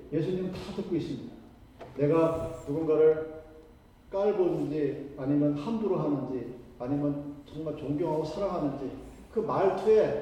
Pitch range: 145-225 Hz